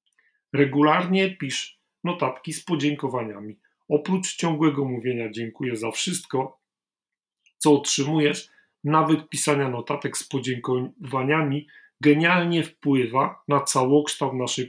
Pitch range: 135-160 Hz